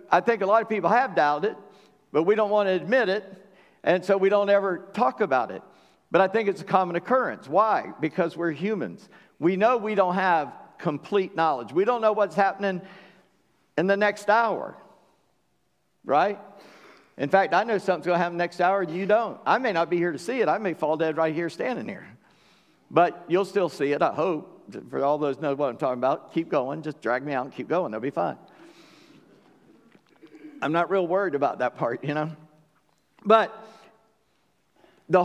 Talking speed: 205 wpm